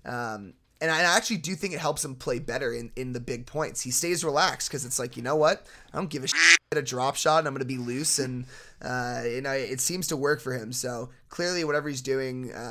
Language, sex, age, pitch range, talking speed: English, male, 20-39, 125-145 Hz, 260 wpm